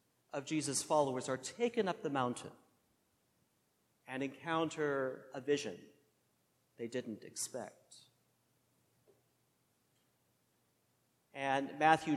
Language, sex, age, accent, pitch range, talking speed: English, male, 50-69, American, 135-170 Hz, 85 wpm